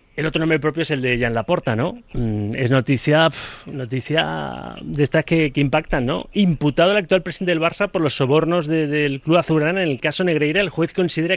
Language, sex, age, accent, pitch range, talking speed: Spanish, male, 30-49, Spanish, 140-190 Hz, 210 wpm